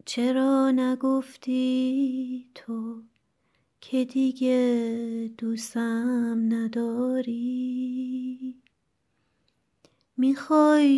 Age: 20-39